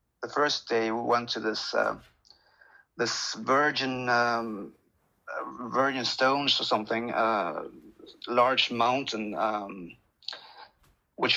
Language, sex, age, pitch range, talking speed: English, male, 30-49, 115-140 Hz, 110 wpm